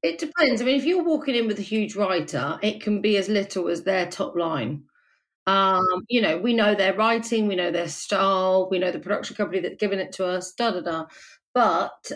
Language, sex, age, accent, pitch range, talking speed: English, female, 40-59, British, 185-220 Hz, 215 wpm